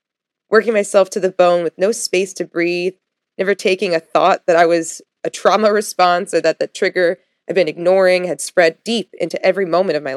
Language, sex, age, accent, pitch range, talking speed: English, female, 20-39, American, 165-195 Hz, 205 wpm